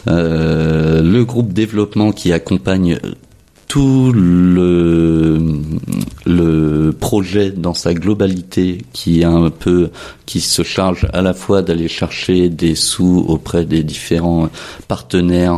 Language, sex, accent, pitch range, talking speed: French, male, French, 80-90 Hz, 110 wpm